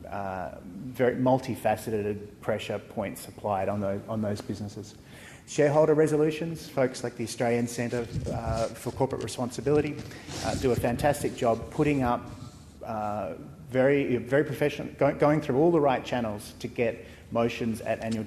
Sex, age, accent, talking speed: male, 30-49, Australian, 140 wpm